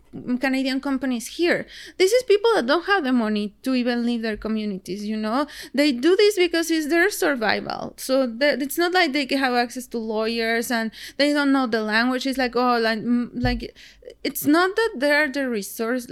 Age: 20-39